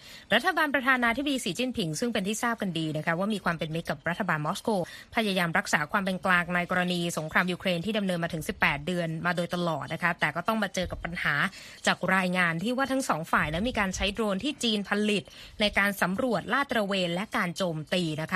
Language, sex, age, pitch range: Thai, female, 20-39, 170-220 Hz